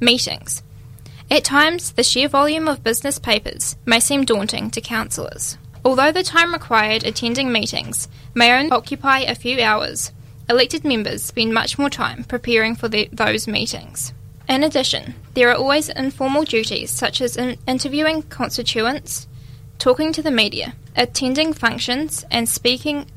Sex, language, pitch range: female, English, 215-265 Hz